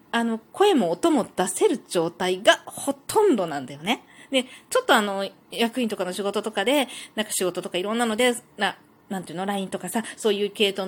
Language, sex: Japanese, female